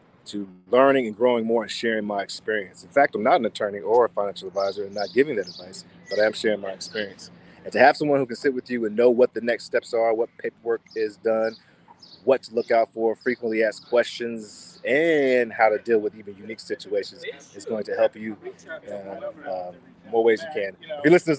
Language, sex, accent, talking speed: English, male, American, 225 wpm